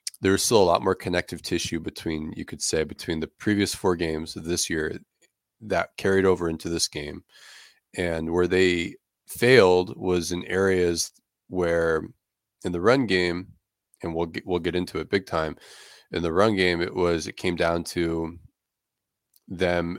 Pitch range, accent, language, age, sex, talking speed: 85-95 Hz, American, English, 30-49, male, 170 wpm